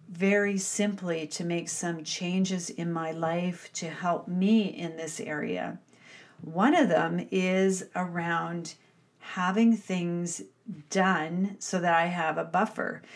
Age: 40-59